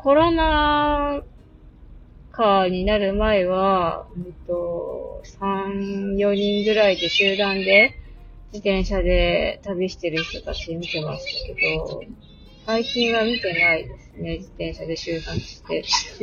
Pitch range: 175-230 Hz